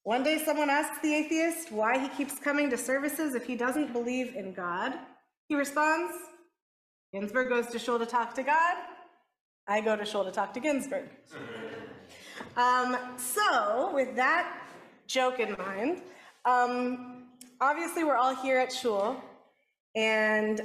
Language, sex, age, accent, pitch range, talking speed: English, female, 30-49, American, 225-300 Hz, 145 wpm